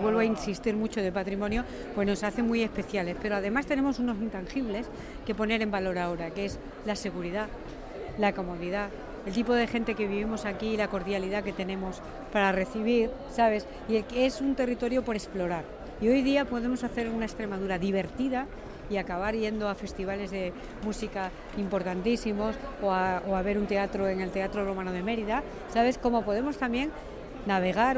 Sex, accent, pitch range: female, Spanish, 195-245 Hz